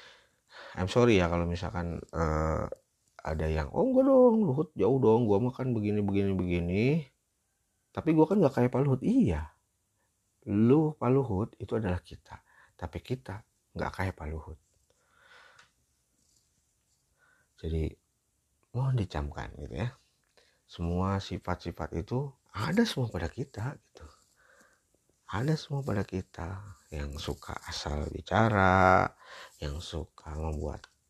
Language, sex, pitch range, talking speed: Indonesian, male, 85-110 Hz, 110 wpm